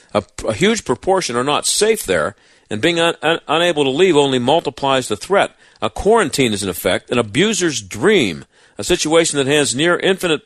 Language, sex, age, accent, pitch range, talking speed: English, male, 50-69, American, 125-170 Hz, 165 wpm